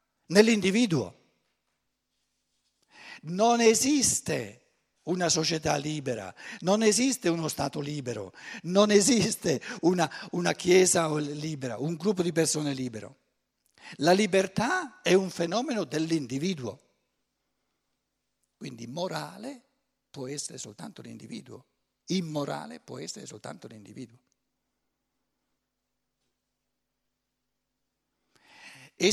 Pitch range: 140-205 Hz